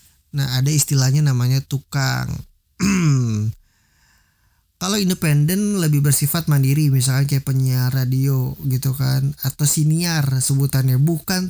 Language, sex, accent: Indonesian, male, native